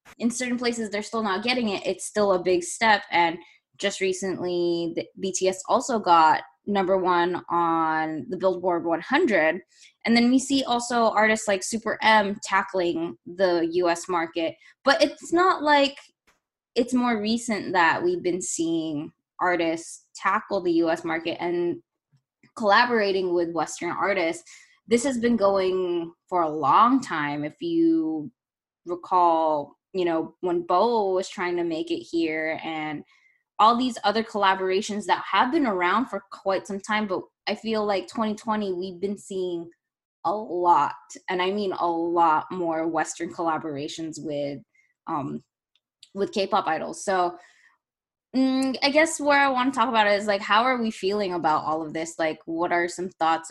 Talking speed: 160 wpm